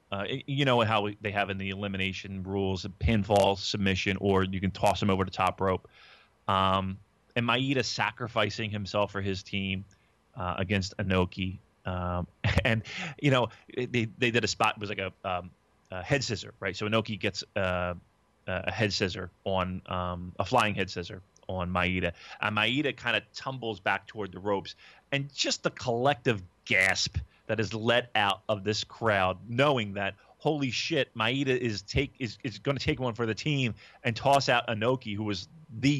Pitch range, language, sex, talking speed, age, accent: 95-125 Hz, English, male, 180 wpm, 30-49, American